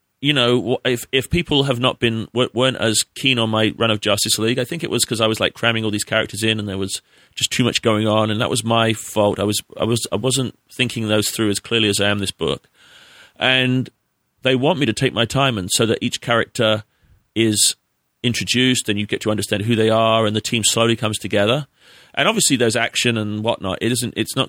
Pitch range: 105-125 Hz